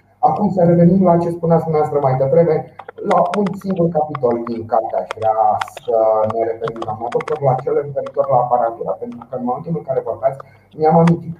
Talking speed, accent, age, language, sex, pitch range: 190 wpm, native, 30-49, Romanian, male, 125-170 Hz